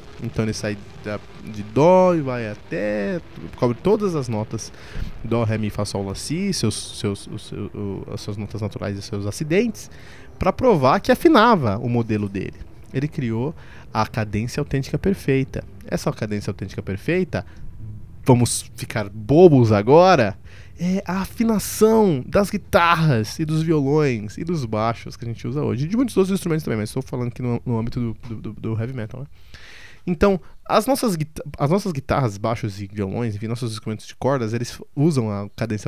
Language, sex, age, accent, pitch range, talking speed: Portuguese, male, 20-39, Brazilian, 105-165 Hz, 175 wpm